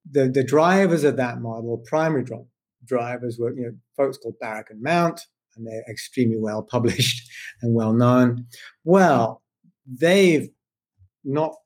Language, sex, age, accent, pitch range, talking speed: English, male, 50-69, British, 120-145 Hz, 135 wpm